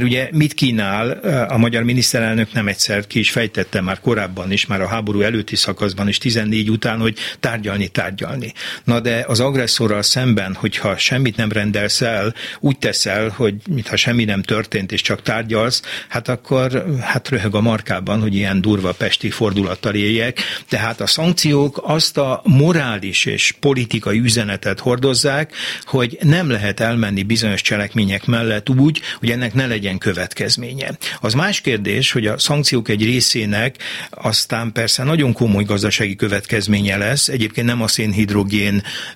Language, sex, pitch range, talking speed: Hungarian, male, 105-125 Hz, 150 wpm